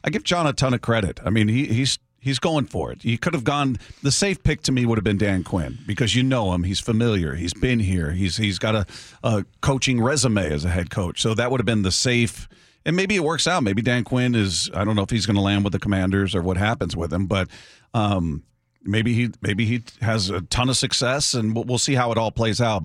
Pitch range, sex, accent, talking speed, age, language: 100-120 Hz, male, American, 265 wpm, 40-59, English